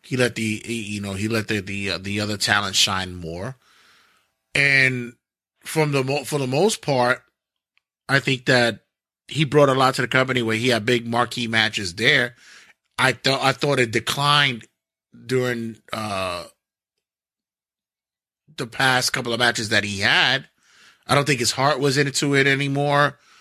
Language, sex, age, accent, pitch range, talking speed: English, male, 30-49, American, 100-130 Hz, 170 wpm